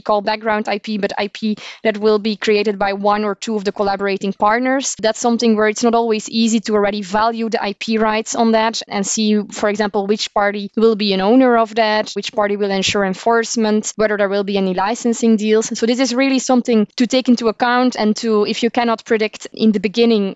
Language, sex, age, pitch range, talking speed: English, female, 20-39, 205-230 Hz, 220 wpm